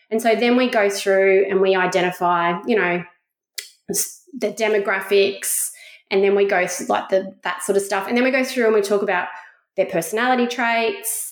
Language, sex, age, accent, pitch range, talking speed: English, female, 20-39, Australian, 195-255 Hz, 185 wpm